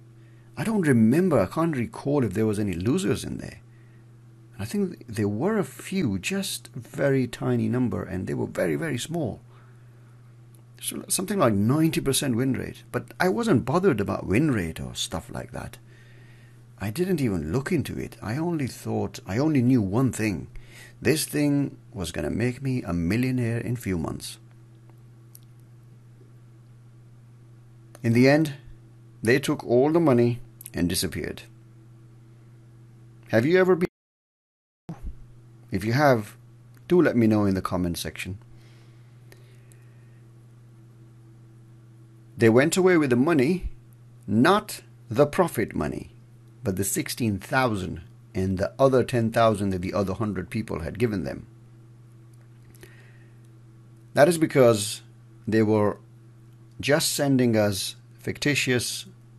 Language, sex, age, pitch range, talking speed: English, male, 60-79, 115-125 Hz, 135 wpm